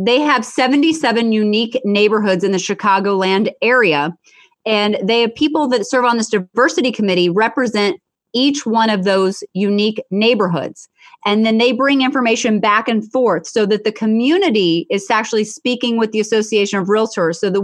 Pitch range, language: 200-250 Hz, English